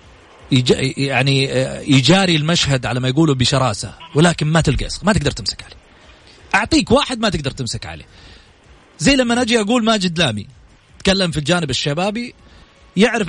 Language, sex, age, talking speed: Arabic, male, 40-59, 140 wpm